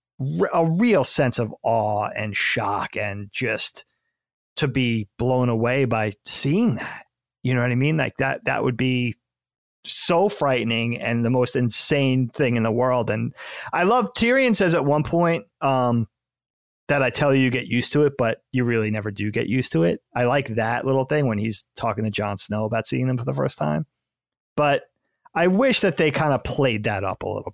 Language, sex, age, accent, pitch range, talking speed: English, male, 30-49, American, 115-160 Hz, 205 wpm